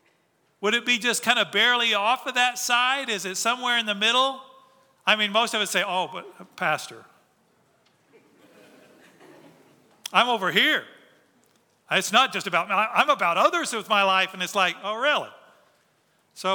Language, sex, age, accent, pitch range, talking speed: English, male, 40-59, American, 195-240 Hz, 165 wpm